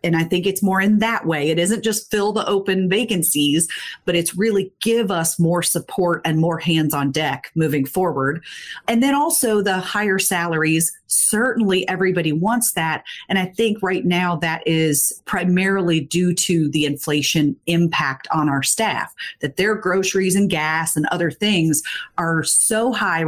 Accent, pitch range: American, 170-220 Hz